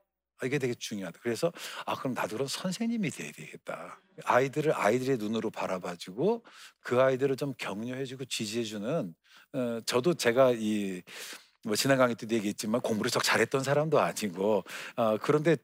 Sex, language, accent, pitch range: male, Korean, native, 110-150 Hz